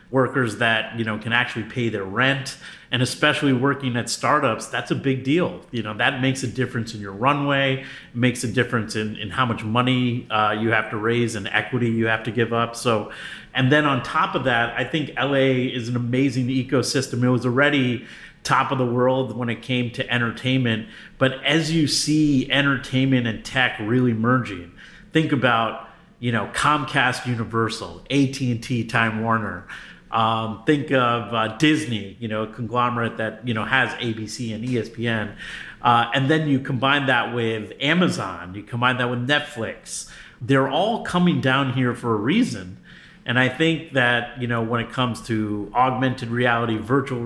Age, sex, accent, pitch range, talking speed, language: 30-49, male, American, 115-135 Hz, 180 wpm, English